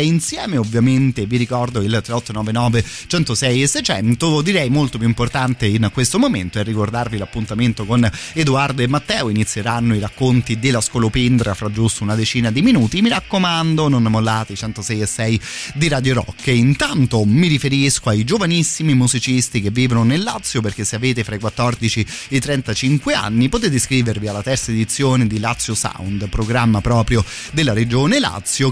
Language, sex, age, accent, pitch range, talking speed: Italian, male, 30-49, native, 110-135 Hz, 165 wpm